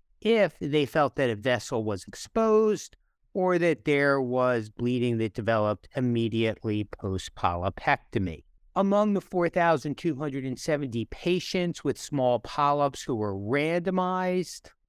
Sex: male